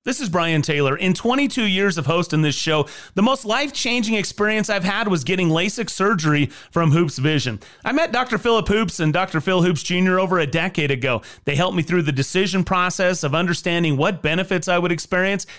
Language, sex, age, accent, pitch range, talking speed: English, male, 30-49, American, 150-220 Hz, 200 wpm